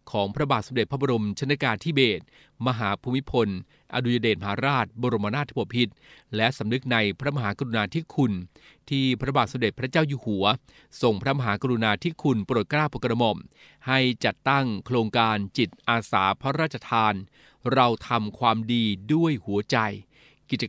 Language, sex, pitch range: Thai, male, 110-135 Hz